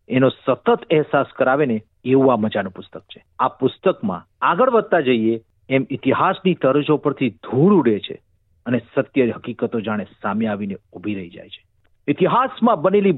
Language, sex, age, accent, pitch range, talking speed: Gujarati, male, 50-69, native, 125-195 Hz, 70 wpm